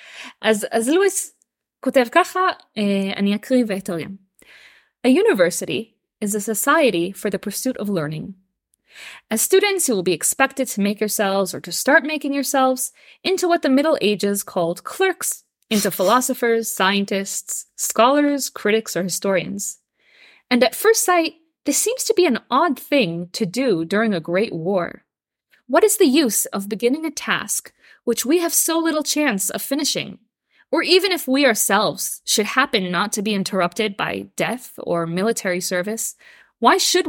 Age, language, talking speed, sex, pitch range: 20-39, Hebrew, 150 wpm, female, 200-300 Hz